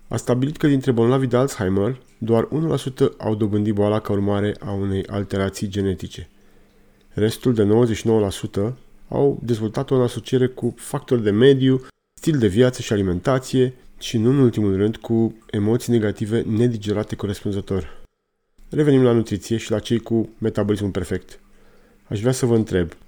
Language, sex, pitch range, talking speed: Romanian, male, 100-125 Hz, 150 wpm